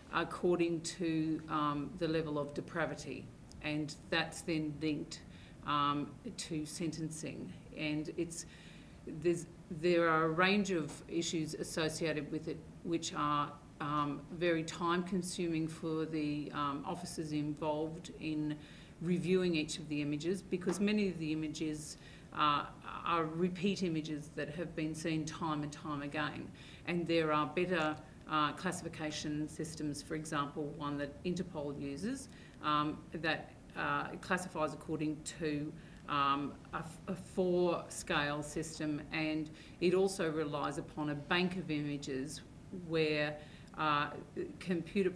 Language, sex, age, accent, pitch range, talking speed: English, female, 40-59, Australian, 150-170 Hz, 130 wpm